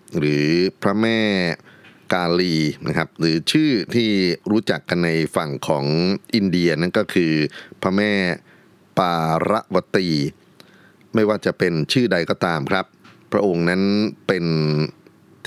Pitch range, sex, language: 75-100 Hz, male, Thai